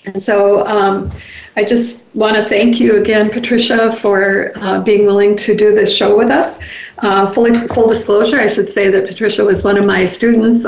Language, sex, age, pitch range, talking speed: English, female, 50-69, 200-230 Hz, 190 wpm